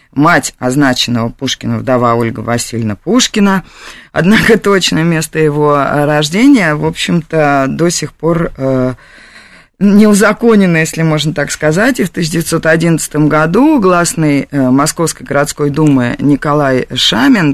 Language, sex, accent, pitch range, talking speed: Russian, female, native, 145-195 Hz, 115 wpm